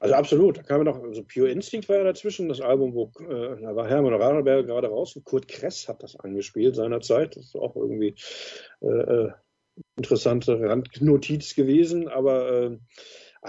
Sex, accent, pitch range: male, German, 125-175 Hz